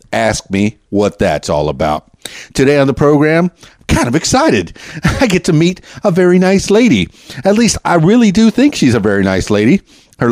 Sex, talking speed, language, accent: male, 190 wpm, English, American